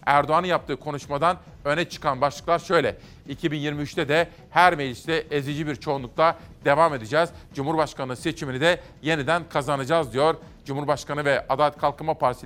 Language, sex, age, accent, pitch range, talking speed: Turkish, male, 40-59, native, 140-170 Hz, 130 wpm